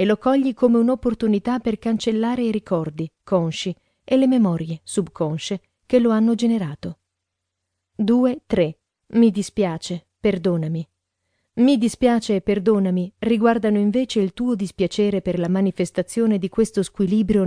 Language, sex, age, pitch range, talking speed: Italian, female, 40-59, 175-230 Hz, 130 wpm